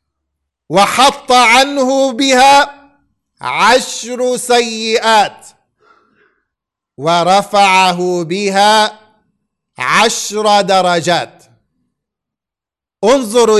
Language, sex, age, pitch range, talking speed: English, male, 50-69, 200-260 Hz, 45 wpm